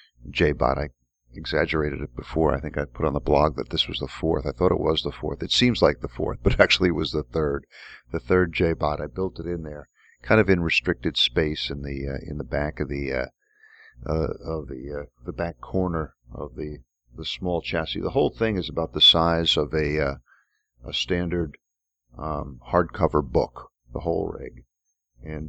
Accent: American